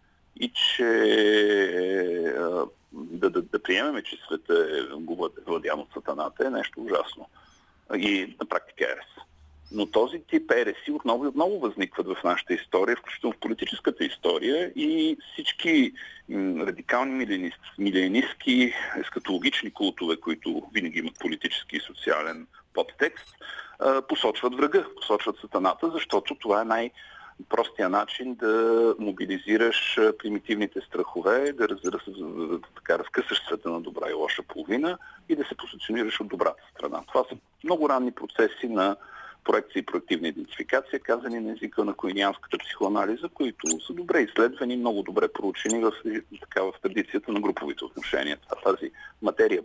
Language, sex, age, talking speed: Bulgarian, male, 50-69, 125 wpm